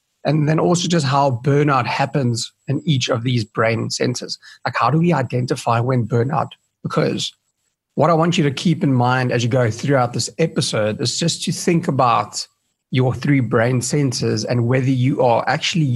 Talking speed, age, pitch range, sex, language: 185 wpm, 30-49, 120-150 Hz, male, English